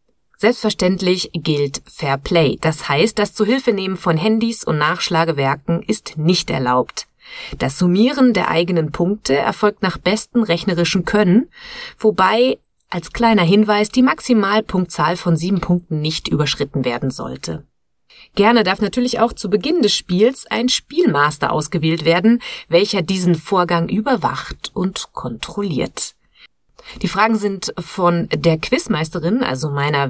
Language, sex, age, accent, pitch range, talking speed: German, female, 30-49, German, 160-220 Hz, 130 wpm